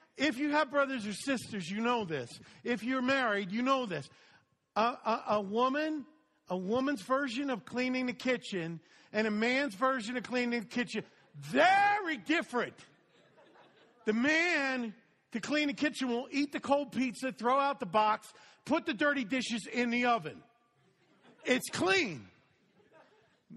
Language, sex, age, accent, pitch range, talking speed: English, male, 50-69, American, 175-260 Hz, 155 wpm